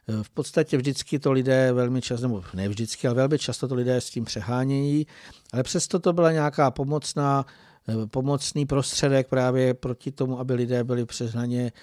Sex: male